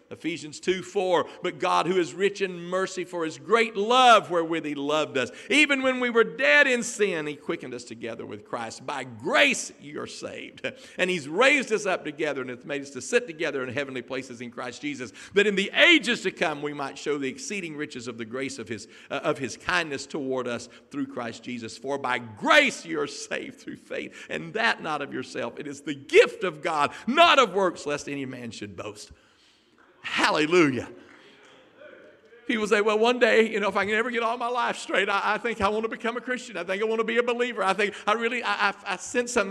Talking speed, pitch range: 230 wpm, 155-235 Hz